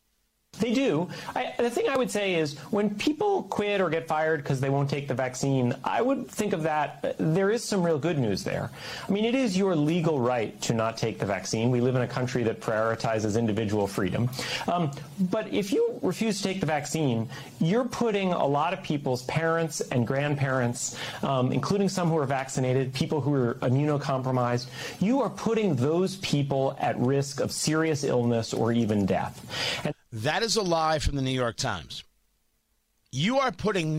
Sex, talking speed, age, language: male, 185 wpm, 40-59, English